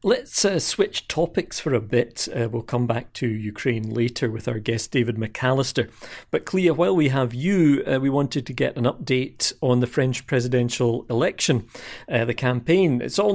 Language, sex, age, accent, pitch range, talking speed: English, male, 40-59, British, 120-160 Hz, 190 wpm